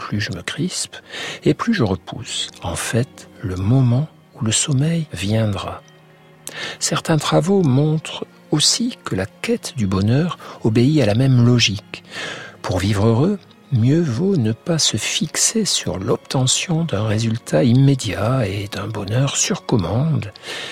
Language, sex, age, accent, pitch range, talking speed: French, male, 60-79, French, 110-150 Hz, 140 wpm